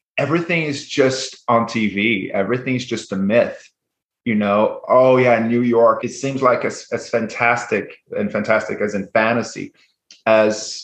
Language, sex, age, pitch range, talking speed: English, male, 30-49, 105-130 Hz, 155 wpm